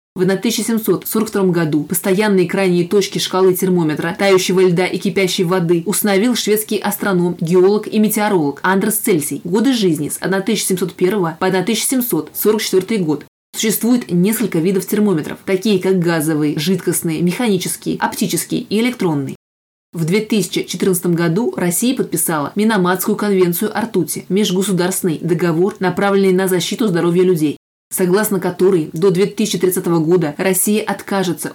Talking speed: 120 wpm